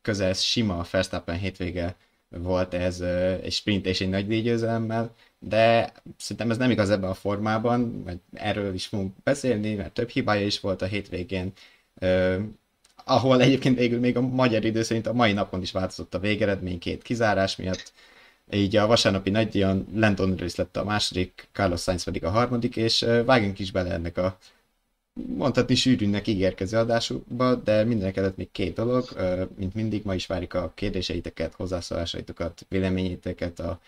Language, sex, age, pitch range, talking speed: Hungarian, male, 20-39, 95-110 Hz, 170 wpm